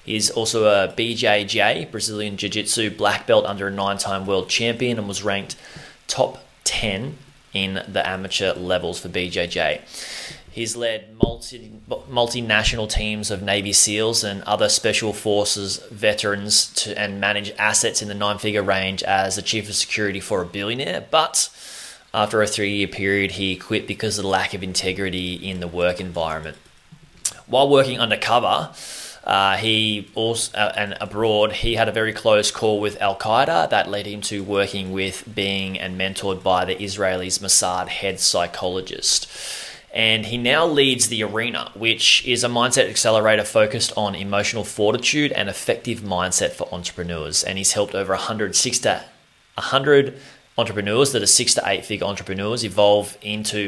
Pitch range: 95-110 Hz